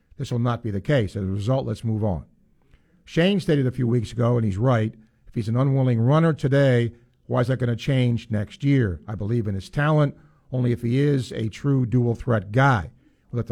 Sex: male